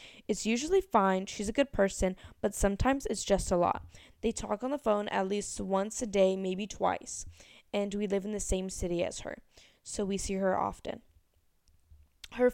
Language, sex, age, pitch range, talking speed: English, female, 10-29, 185-225 Hz, 190 wpm